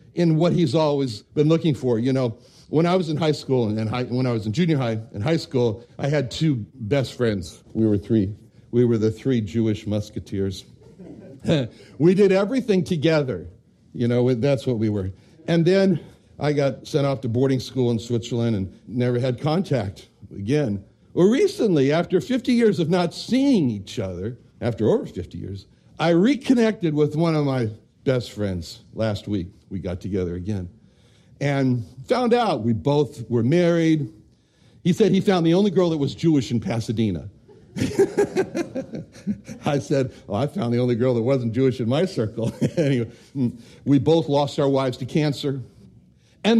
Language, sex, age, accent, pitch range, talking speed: English, male, 60-79, American, 110-160 Hz, 175 wpm